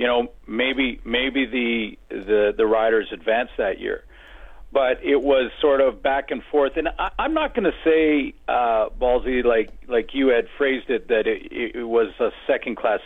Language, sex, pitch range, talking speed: English, male, 115-150 Hz, 185 wpm